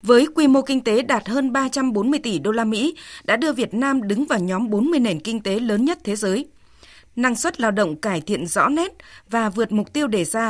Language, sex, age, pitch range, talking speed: Vietnamese, female, 20-39, 205-275 Hz, 235 wpm